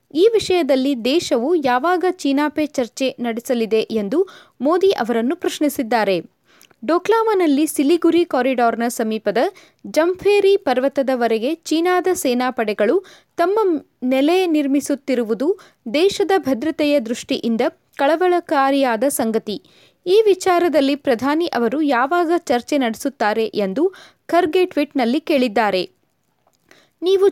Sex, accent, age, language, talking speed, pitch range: female, native, 20-39, Kannada, 85 wpm, 250-345 Hz